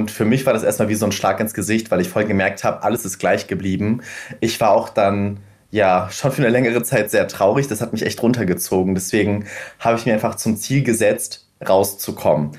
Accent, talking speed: German, 225 wpm